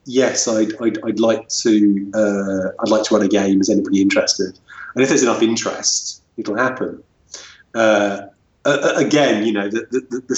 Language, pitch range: English, 100-110 Hz